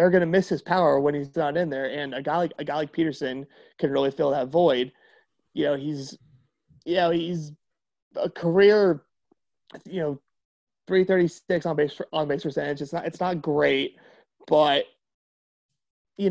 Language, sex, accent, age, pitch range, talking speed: English, male, American, 30-49, 145-185 Hz, 175 wpm